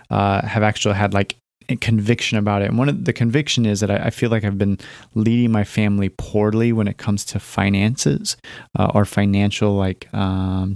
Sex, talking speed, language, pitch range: male, 200 wpm, English, 100-115 Hz